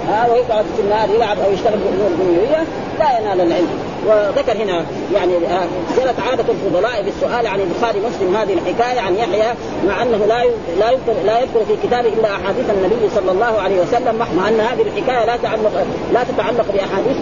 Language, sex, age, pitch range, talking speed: Arabic, female, 30-49, 195-240 Hz, 175 wpm